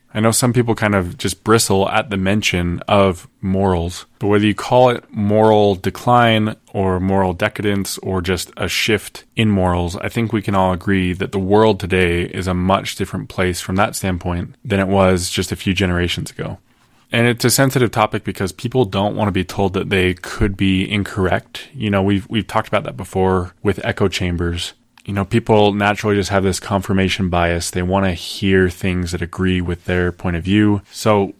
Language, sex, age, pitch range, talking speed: English, male, 20-39, 90-110 Hz, 200 wpm